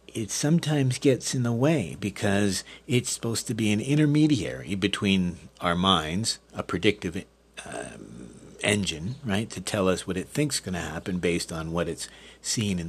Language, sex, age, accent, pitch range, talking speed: English, male, 50-69, American, 95-130 Hz, 170 wpm